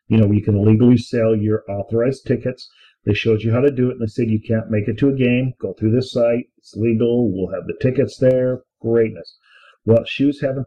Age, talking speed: 50-69, 235 wpm